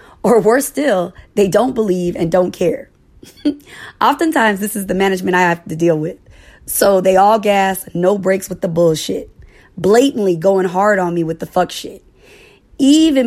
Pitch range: 165-235 Hz